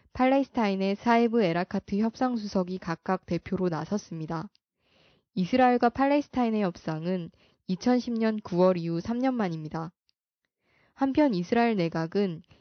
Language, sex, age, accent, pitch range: Korean, female, 20-39, native, 180-230 Hz